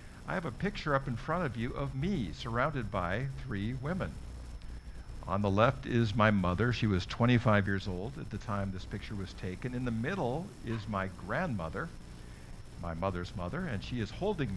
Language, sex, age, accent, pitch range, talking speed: English, male, 60-79, American, 95-120 Hz, 190 wpm